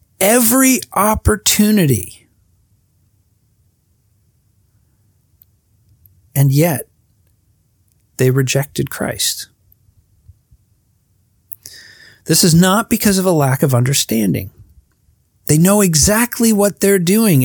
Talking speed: 75 wpm